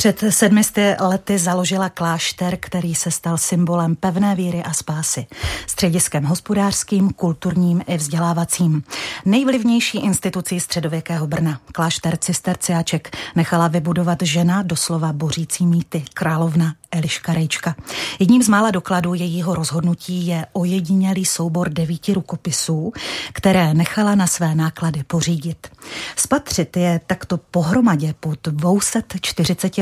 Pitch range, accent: 160-185 Hz, native